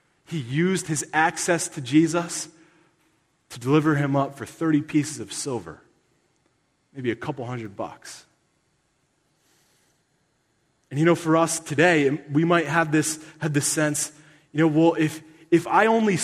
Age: 30-49